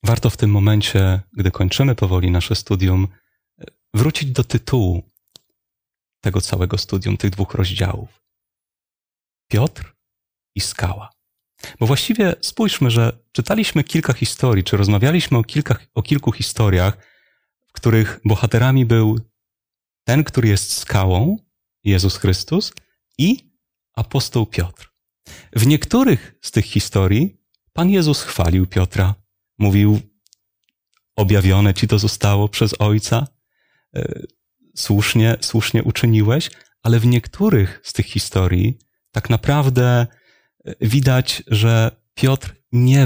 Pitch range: 100-125 Hz